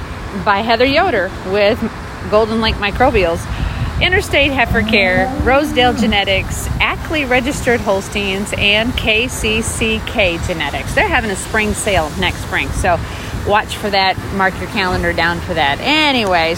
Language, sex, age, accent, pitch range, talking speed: English, female, 40-59, American, 200-250 Hz, 130 wpm